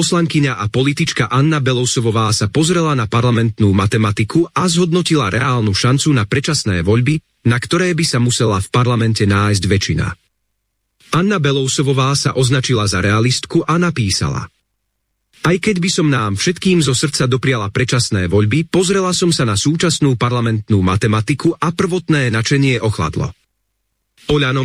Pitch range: 105-155 Hz